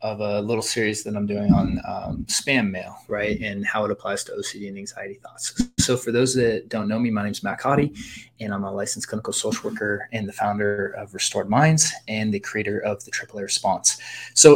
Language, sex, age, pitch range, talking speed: English, male, 20-39, 105-120 Hz, 225 wpm